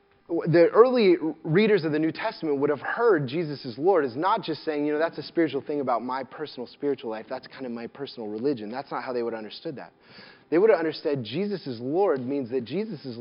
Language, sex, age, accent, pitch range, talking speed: English, male, 20-39, American, 130-175 Hz, 240 wpm